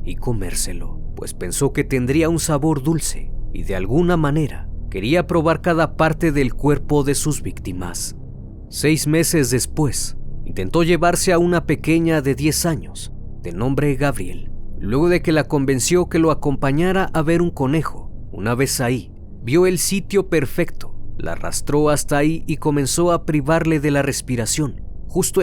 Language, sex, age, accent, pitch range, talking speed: Spanish, male, 40-59, Mexican, 120-165 Hz, 155 wpm